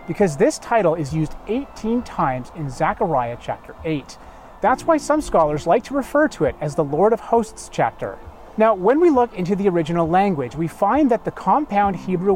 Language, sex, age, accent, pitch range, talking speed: English, male, 30-49, American, 160-235 Hz, 195 wpm